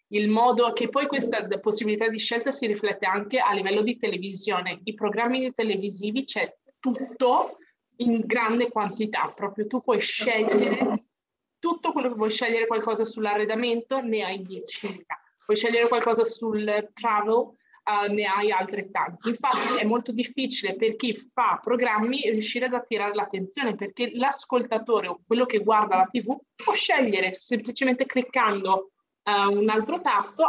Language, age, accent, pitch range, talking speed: Italian, 20-39, native, 205-250 Hz, 145 wpm